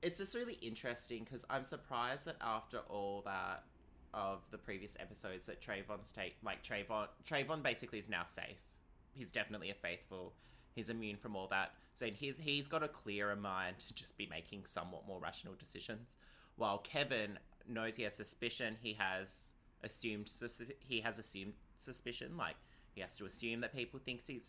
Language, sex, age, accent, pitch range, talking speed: English, male, 20-39, Australian, 95-120 Hz, 175 wpm